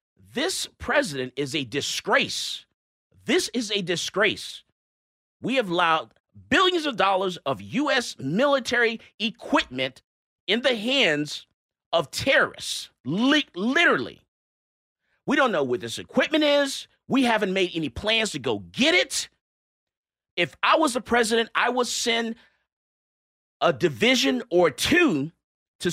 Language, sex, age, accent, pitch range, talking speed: English, male, 40-59, American, 175-270 Hz, 125 wpm